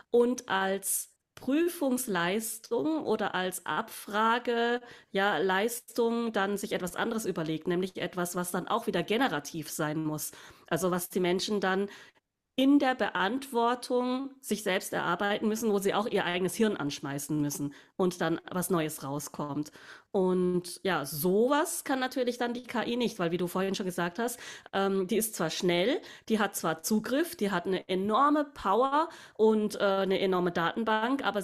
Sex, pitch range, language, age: female, 180-225 Hz, German, 30-49